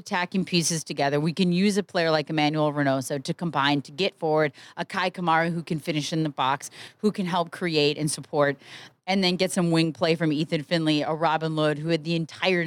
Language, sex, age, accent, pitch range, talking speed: English, female, 30-49, American, 145-175 Hz, 225 wpm